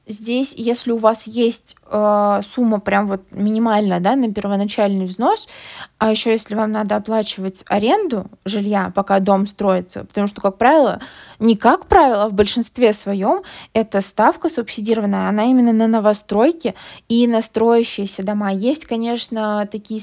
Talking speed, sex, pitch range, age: 145 wpm, female, 200-235 Hz, 20-39